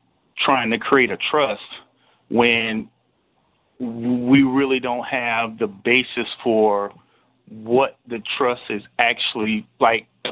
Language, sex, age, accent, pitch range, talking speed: English, male, 40-59, American, 110-130 Hz, 115 wpm